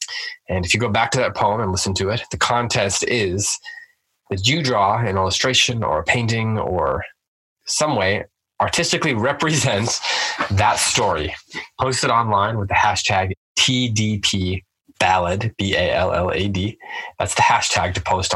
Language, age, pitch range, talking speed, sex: English, 20-39, 90-115 Hz, 145 wpm, male